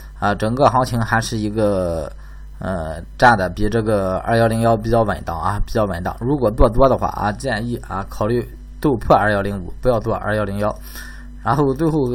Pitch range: 100-130 Hz